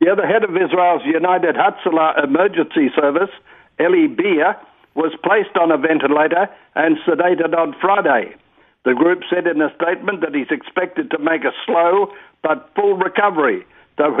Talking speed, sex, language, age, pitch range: 155 wpm, male, English, 60-79, 160-200 Hz